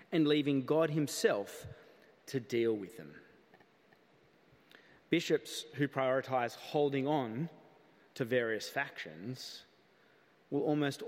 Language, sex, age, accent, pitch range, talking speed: English, male, 30-49, Australian, 120-155 Hz, 95 wpm